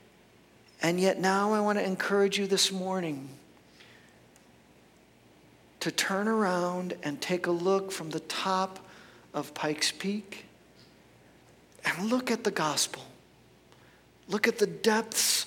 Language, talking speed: English, 125 wpm